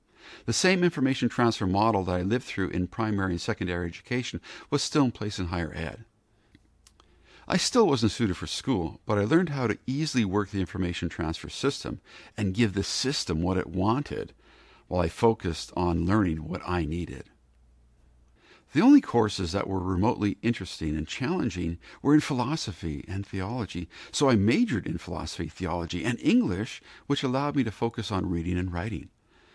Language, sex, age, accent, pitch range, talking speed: English, male, 50-69, American, 85-115 Hz, 170 wpm